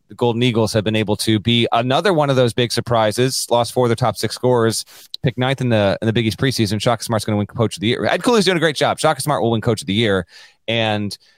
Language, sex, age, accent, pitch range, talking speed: English, male, 30-49, American, 105-135 Hz, 290 wpm